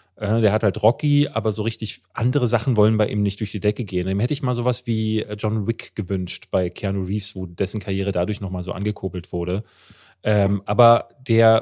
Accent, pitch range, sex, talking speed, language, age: German, 100-120 Hz, male, 200 wpm, German, 30-49